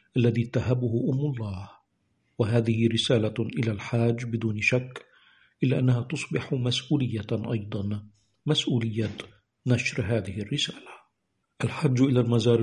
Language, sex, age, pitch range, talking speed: Arabic, male, 50-69, 110-125 Hz, 105 wpm